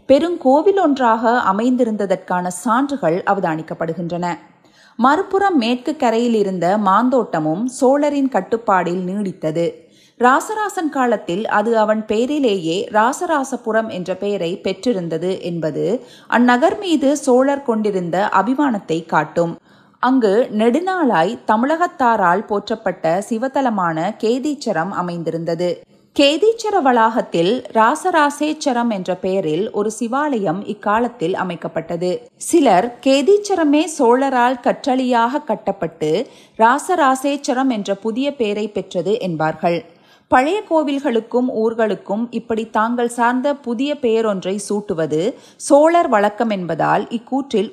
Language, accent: Tamil, native